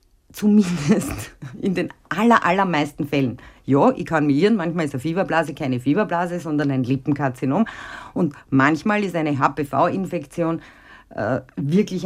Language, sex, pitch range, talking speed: German, female, 140-190 Hz, 125 wpm